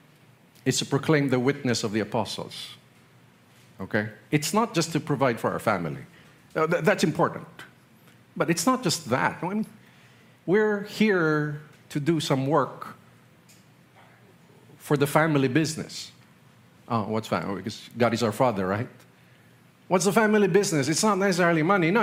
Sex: male